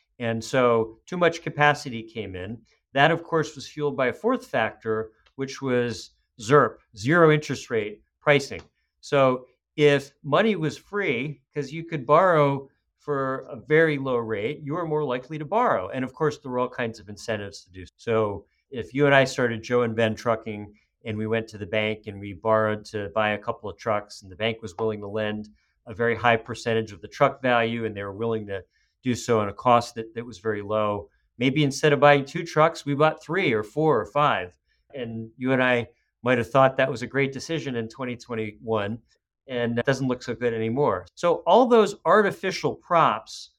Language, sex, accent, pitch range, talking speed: English, male, American, 110-140 Hz, 200 wpm